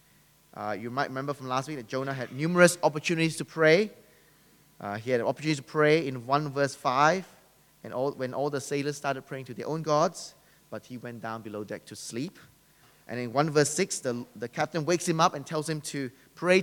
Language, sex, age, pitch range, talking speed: English, male, 20-39, 120-150 Hz, 220 wpm